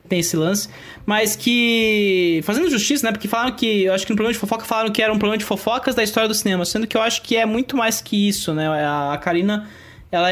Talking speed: 250 wpm